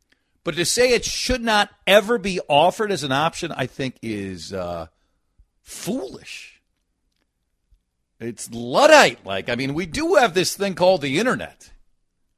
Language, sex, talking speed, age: English, male, 140 wpm, 50-69